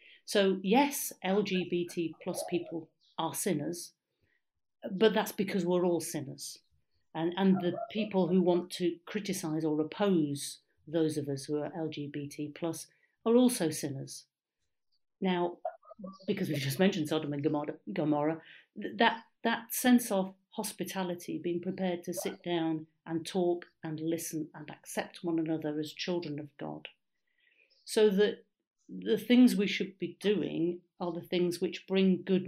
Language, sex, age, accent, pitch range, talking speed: English, female, 50-69, British, 155-195 Hz, 140 wpm